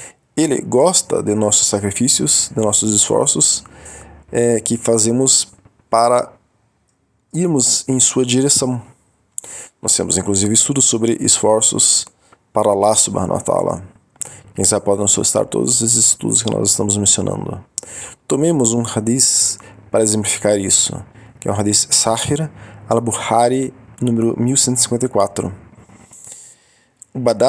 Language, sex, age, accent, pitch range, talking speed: Portuguese, male, 20-39, Brazilian, 105-125 Hz, 115 wpm